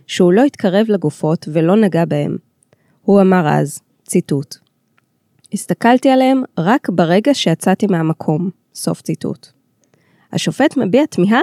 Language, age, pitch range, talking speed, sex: Hebrew, 20-39, 165-230 Hz, 115 wpm, female